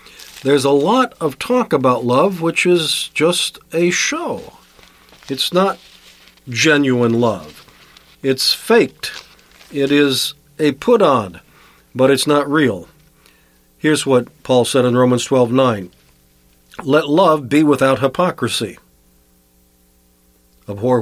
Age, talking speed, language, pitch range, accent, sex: 50-69, 115 wpm, English, 115-150 Hz, American, male